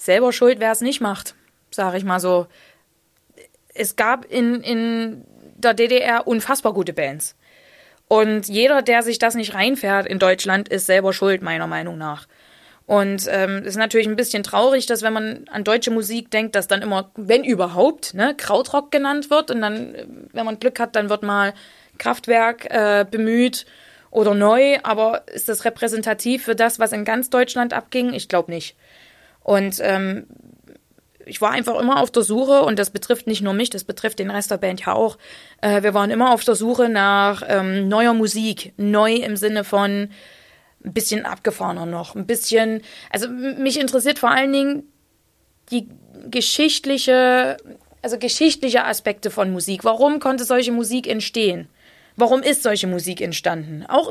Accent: German